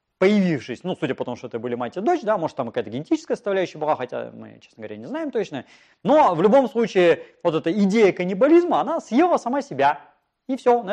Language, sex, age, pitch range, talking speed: Russian, male, 30-49, 150-240 Hz, 220 wpm